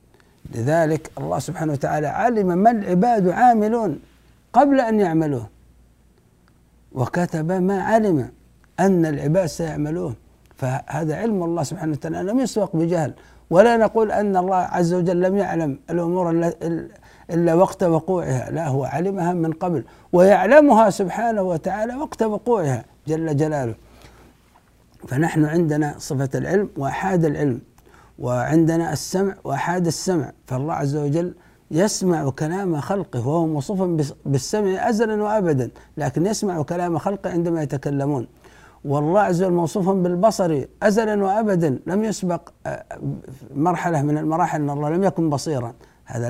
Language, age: Arabic, 60-79